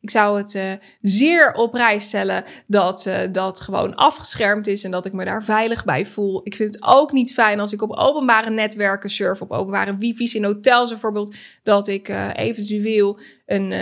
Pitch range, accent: 205-245 Hz, Dutch